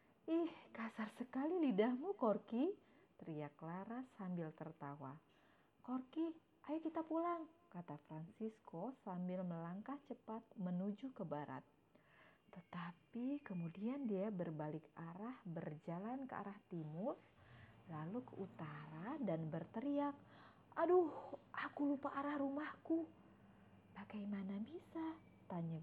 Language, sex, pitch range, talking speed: Indonesian, female, 165-250 Hz, 100 wpm